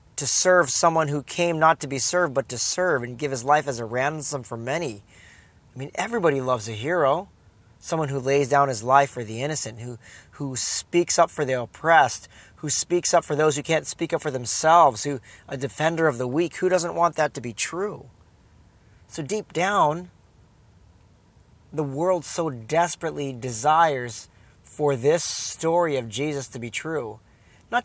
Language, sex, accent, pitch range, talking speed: English, male, American, 115-150 Hz, 180 wpm